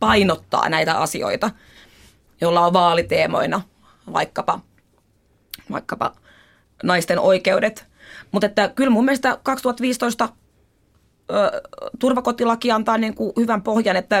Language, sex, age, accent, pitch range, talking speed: Finnish, female, 20-39, native, 185-240 Hz, 95 wpm